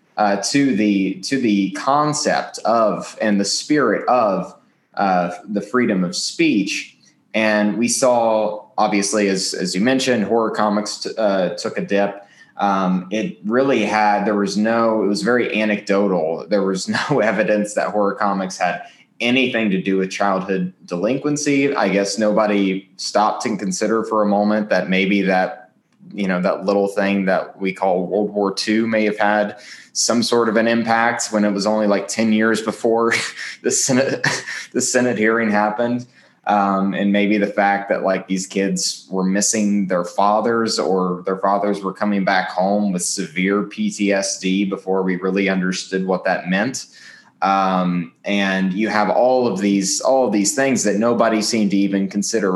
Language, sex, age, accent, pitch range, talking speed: English, male, 20-39, American, 95-110 Hz, 170 wpm